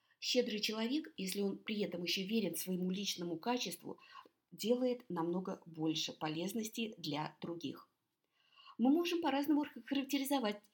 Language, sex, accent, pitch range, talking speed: Russian, female, native, 180-255 Hz, 115 wpm